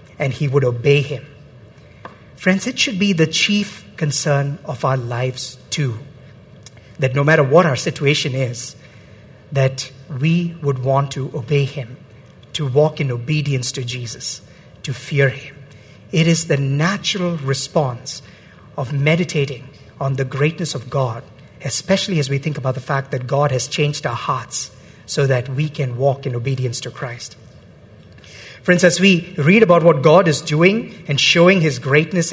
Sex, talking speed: male, 160 wpm